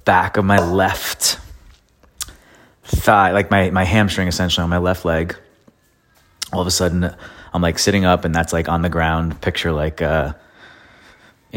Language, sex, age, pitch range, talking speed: English, male, 30-49, 80-95 Hz, 160 wpm